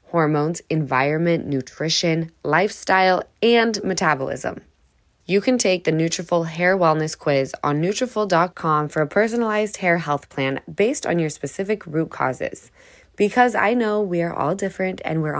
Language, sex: English, female